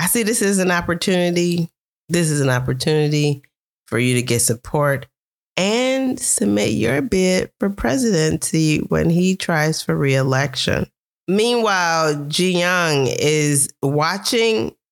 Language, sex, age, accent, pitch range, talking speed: English, female, 40-59, American, 135-180 Hz, 125 wpm